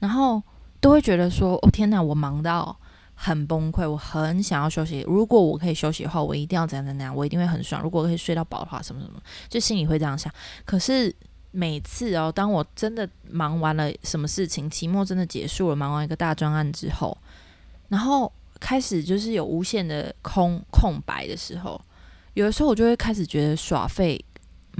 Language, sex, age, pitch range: Chinese, female, 20-39, 155-195 Hz